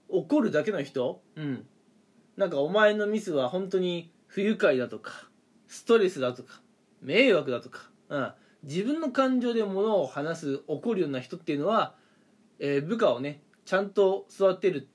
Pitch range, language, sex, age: 170-220 Hz, Japanese, male, 20-39